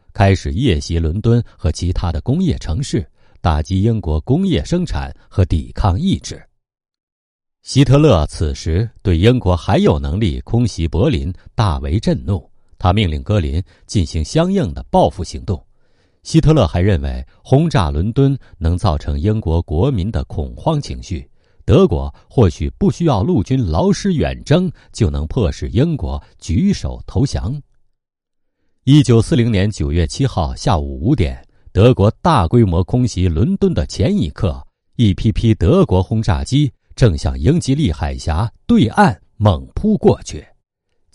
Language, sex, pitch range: Chinese, male, 85-125 Hz